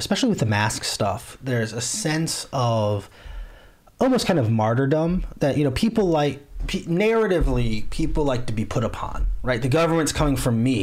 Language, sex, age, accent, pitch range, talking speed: English, male, 30-49, American, 125-150 Hz, 175 wpm